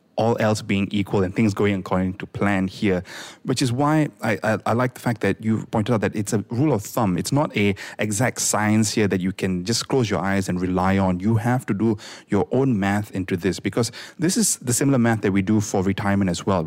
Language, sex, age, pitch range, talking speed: English, male, 30-49, 95-115 Hz, 245 wpm